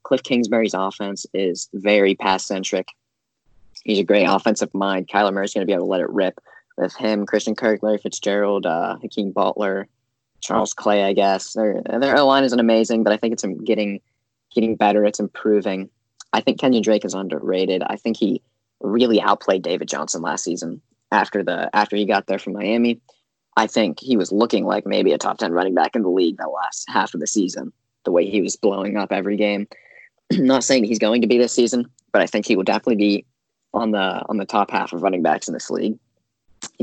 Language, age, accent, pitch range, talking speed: English, 10-29, American, 100-115 Hz, 210 wpm